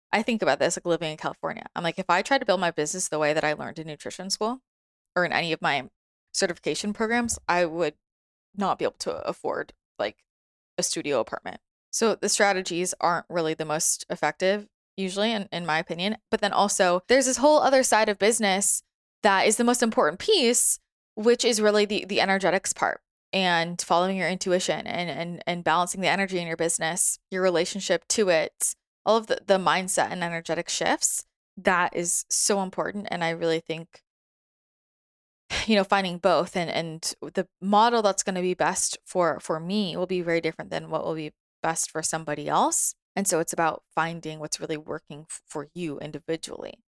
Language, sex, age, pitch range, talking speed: English, female, 20-39, 160-205 Hz, 195 wpm